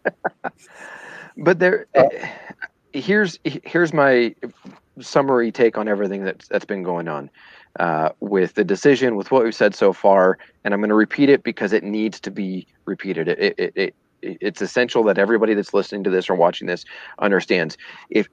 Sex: male